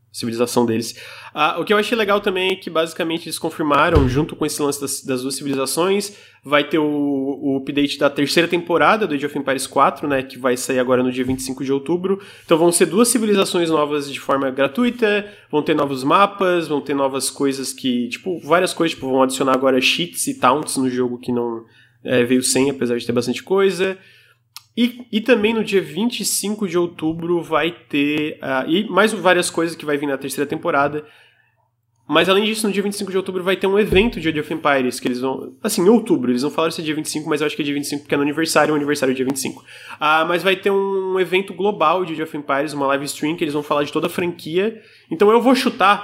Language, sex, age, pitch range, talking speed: Portuguese, male, 20-39, 135-190 Hz, 230 wpm